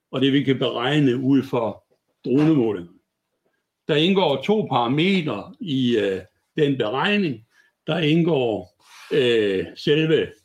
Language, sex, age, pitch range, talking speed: Danish, male, 60-79, 120-155 Hz, 115 wpm